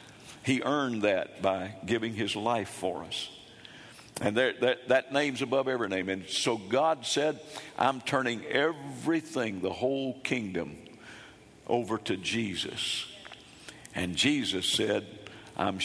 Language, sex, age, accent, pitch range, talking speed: English, male, 60-79, American, 120-160 Hz, 130 wpm